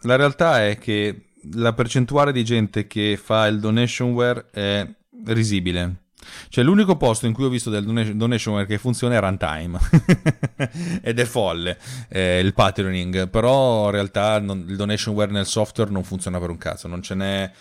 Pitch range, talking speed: 95-115 Hz, 155 wpm